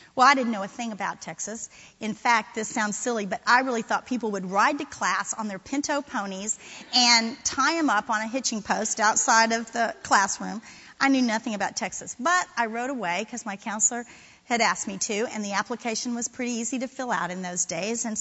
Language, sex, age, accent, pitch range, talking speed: English, female, 40-59, American, 200-245 Hz, 220 wpm